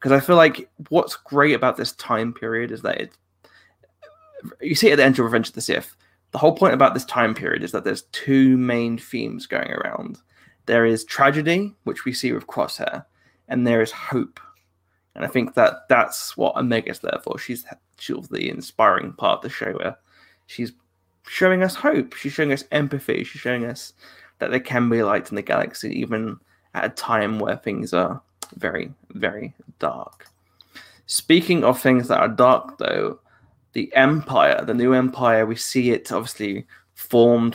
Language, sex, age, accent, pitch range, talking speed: English, male, 20-39, British, 110-135 Hz, 185 wpm